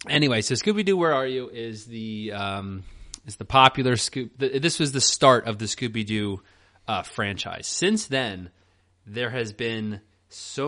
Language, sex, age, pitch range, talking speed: English, male, 30-49, 105-130 Hz, 165 wpm